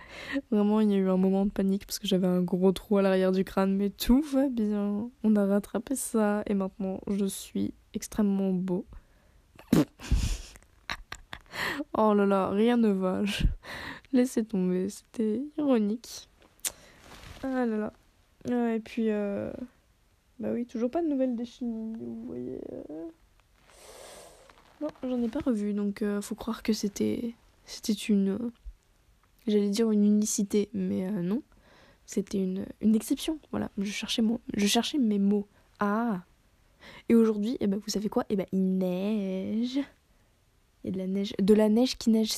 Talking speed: 160 wpm